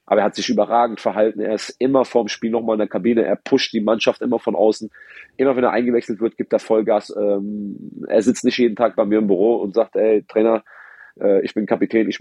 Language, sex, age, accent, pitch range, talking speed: German, male, 30-49, German, 100-120 Hz, 230 wpm